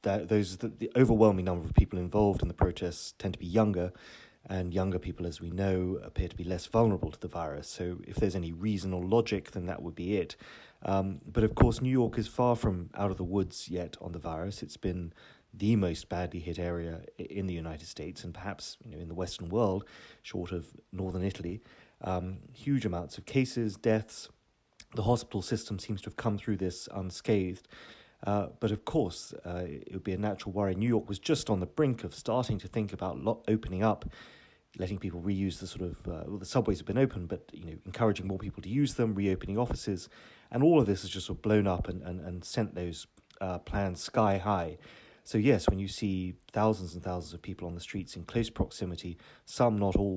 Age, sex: 30-49, male